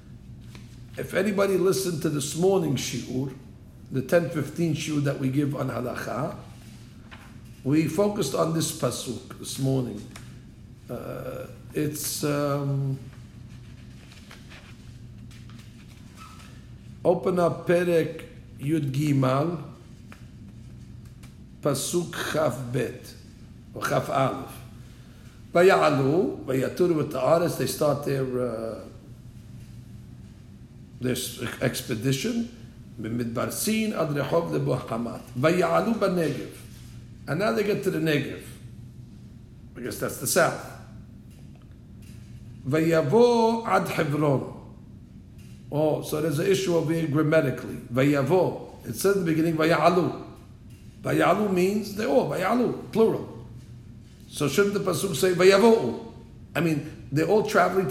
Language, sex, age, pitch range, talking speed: English, male, 50-69, 115-165 Hz, 85 wpm